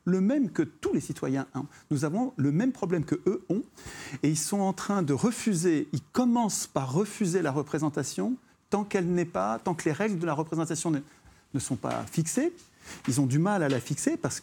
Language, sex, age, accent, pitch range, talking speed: French, male, 50-69, French, 145-195 Hz, 210 wpm